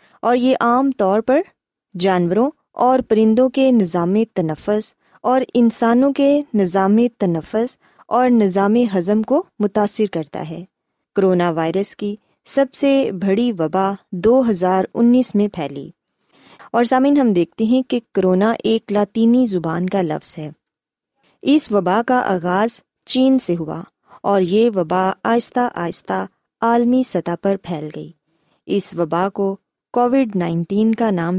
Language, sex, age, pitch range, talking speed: Urdu, female, 20-39, 185-245 Hz, 140 wpm